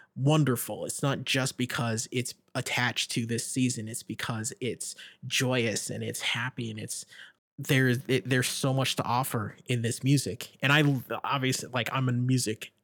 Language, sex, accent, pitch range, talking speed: English, male, American, 115-135 Hz, 170 wpm